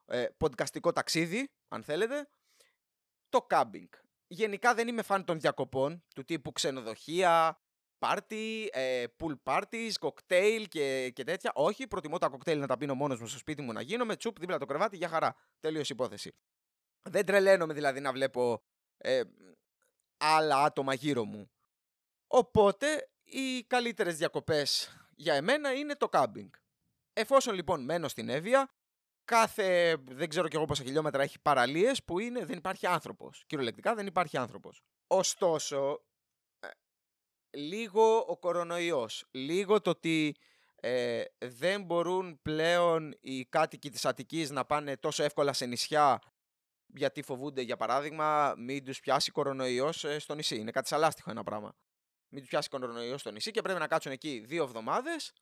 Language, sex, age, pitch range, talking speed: Greek, male, 20-39, 140-210 Hz, 145 wpm